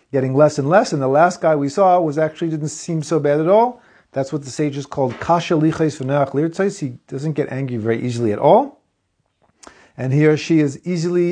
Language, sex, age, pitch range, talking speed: English, male, 40-59, 115-160 Hz, 200 wpm